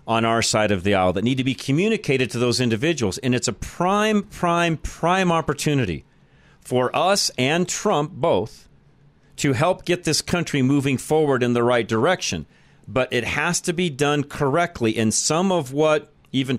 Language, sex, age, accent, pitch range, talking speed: English, male, 40-59, American, 120-150 Hz, 175 wpm